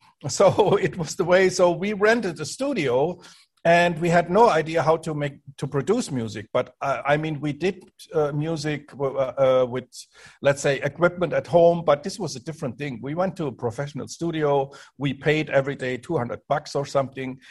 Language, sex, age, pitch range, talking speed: English, male, 50-69, 145-180 Hz, 195 wpm